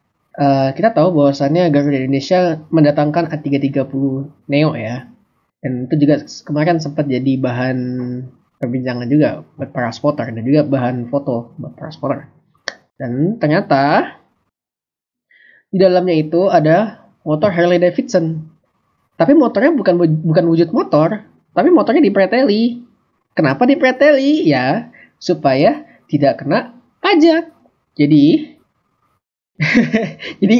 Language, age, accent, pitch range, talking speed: Indonesian, 20-39, native, 135-190 Hz, 110 wpm